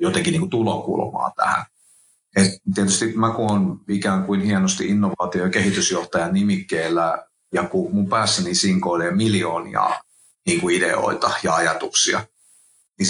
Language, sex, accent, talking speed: Finnish, male, native, 125 wpm